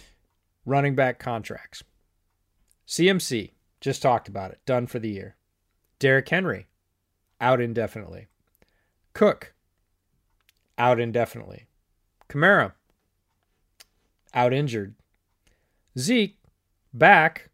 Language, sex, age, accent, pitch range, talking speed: English, male, 30-49, American, 100-140 Hz, 80 wpm